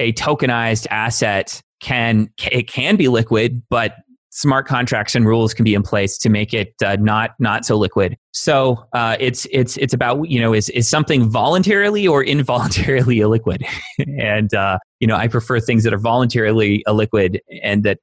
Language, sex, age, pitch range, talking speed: English, male, 30-49, 105-130 Hz, 175 wpm